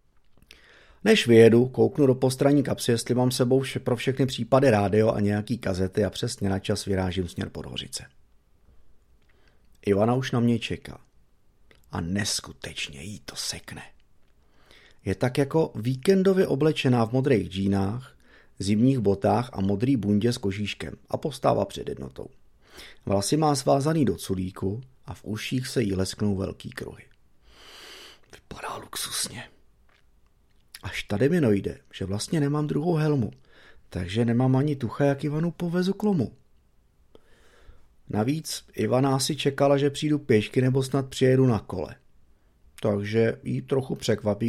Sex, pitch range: male, 100-140 Hz